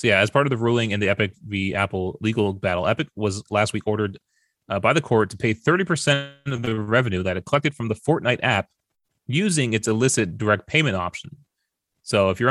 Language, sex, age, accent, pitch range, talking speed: English, male, 30-49, American, 95-130 Hz, 215 wpm